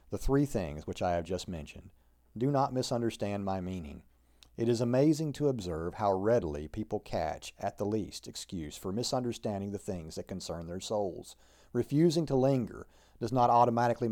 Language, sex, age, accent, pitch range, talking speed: English, male, 40-59, American, 90-125 Hz, 170 wpm